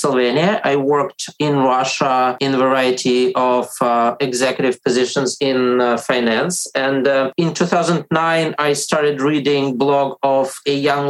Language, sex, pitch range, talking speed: English, male, 130-155 Hz, 135 wpm